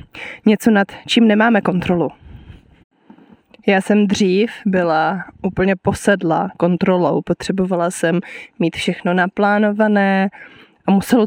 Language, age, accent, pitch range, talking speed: Czech, 20-39, native, 190-235 Hz, 100 wpm